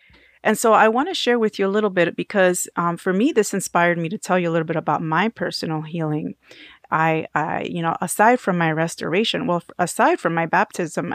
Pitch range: 170-210 Hz